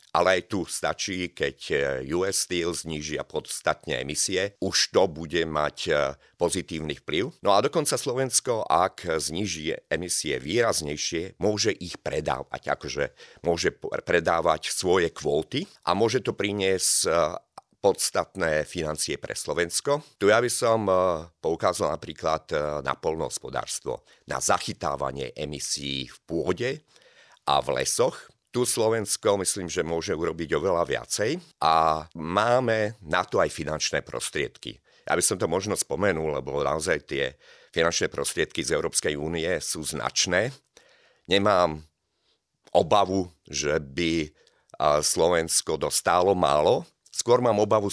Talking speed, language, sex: 120 wpm, Slovak, male